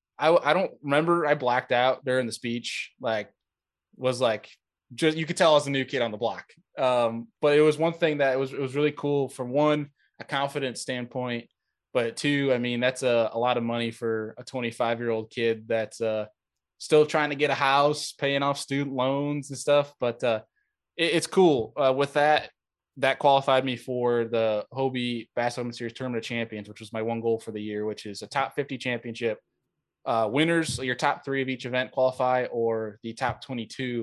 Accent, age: American, 20-39